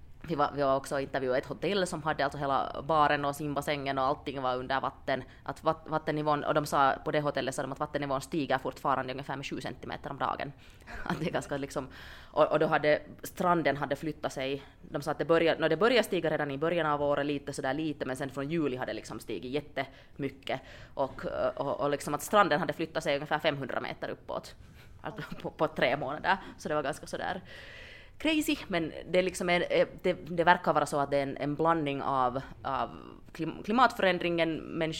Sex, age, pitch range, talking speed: female, 20-39, 135-160 Hz, 205 wpm